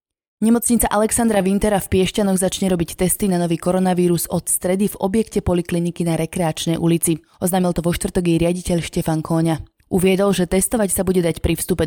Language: Slovak